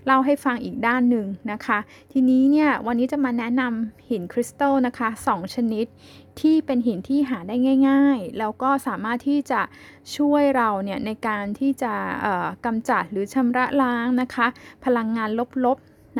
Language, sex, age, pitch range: Thai, female, 10-29, 220-265 Hz